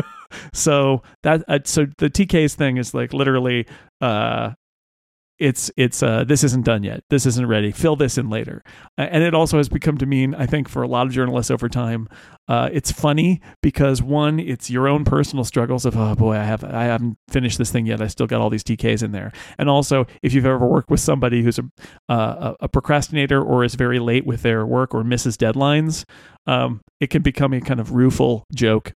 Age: 40-59